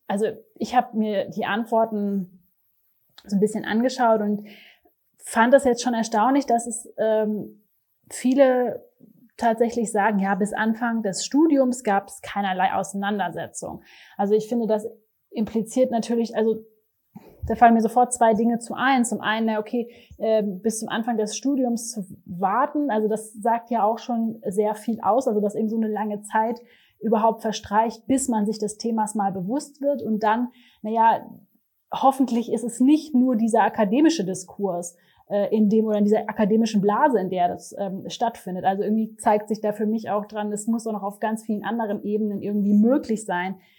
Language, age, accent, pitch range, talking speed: German, 30-49, German, 200-235 Hz, 175 wpm